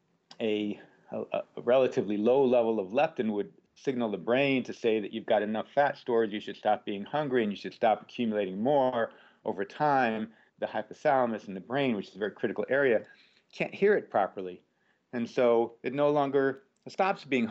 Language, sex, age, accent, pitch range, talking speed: English, male, 40-59, American, 105-135 Hz, 190 wpm